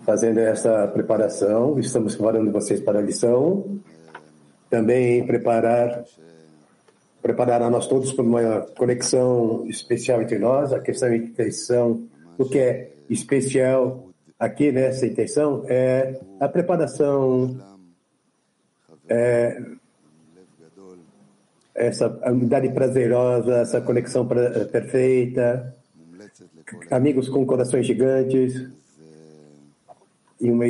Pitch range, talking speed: 115-130 Hz, 90 wpm